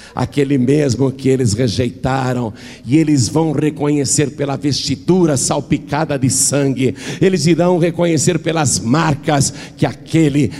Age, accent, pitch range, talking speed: 60-79, Brazilian, 120-175 Hz, 120 wpm